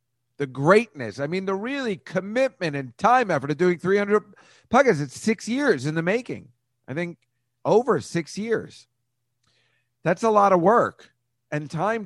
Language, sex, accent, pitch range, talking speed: English, male, American, 115-140 Hz, 160 wpm